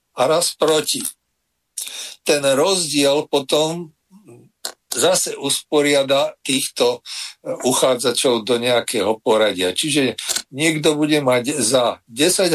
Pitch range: 130-160 Hz